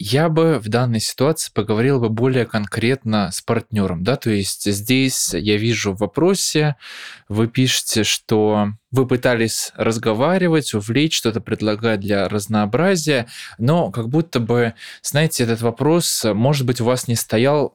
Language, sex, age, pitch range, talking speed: Russian, male, 20-39, 105-130 Hz, 145 wpm